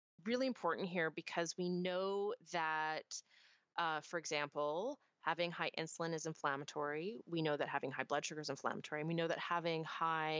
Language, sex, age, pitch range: English, female, 30-49, 155-195 Hz